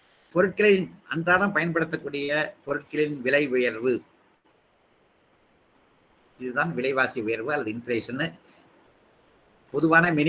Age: 60-79